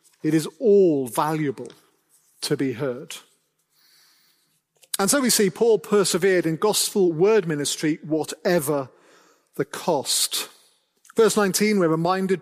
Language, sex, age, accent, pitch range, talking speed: English, male, 40-59, British, 160-210 Hz, 115 wpm